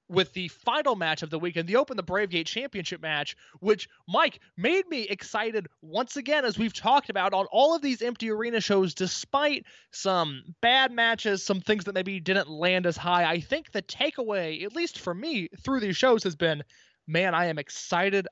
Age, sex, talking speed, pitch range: 20-39, male, 195 wpm, 170-230 Hz